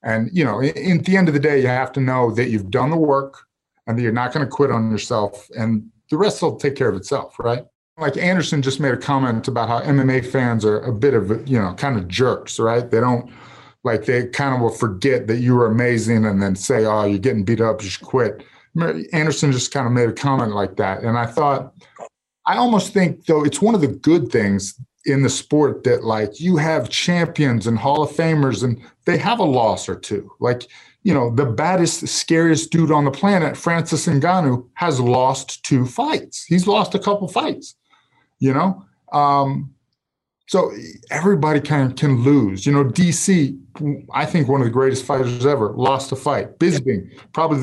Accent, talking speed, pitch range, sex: American, 210 wpm, 115-150 Hz, male